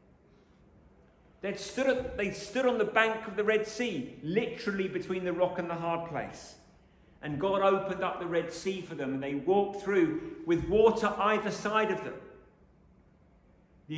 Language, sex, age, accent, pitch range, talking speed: English, male, 40-59, British, 135-200 Hz, 165 wpm